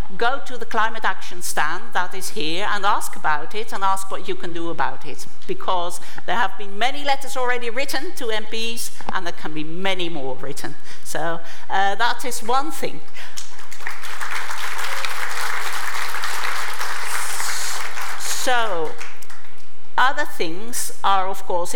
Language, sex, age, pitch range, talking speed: English, female, 60-79, 175-245 Hz, 140 wpm